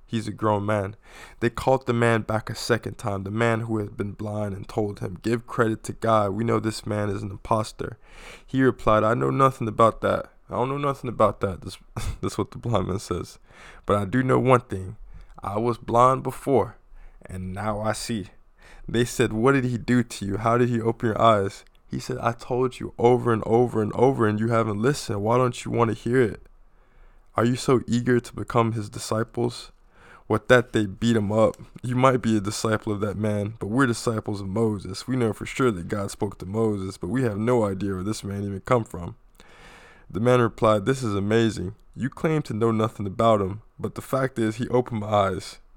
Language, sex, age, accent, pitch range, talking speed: English, male, 20-39, American, 105-120 Hz, 220 wpm